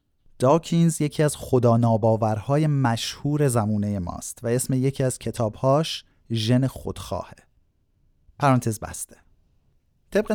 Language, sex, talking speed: Persian, male, 105 wpm